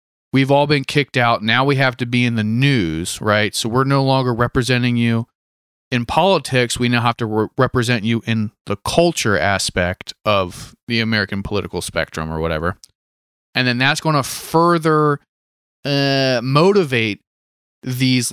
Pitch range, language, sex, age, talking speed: 115-155 Hz, English, male, 30-49, 160 wpm